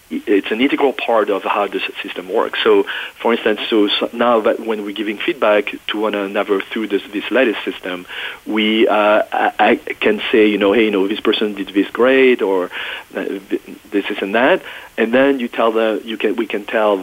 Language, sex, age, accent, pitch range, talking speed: English, male, 40-59, French, 100-115 Hz, 200 wpm